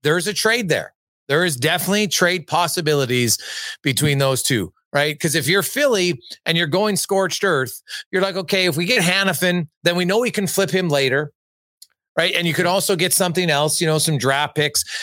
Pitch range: 130-185 Hz